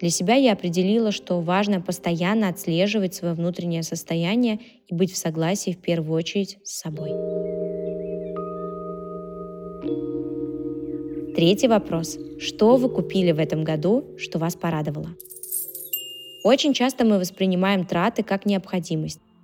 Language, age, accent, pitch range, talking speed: Russian, 20-39, native, 170-210 Hz, 115 wpm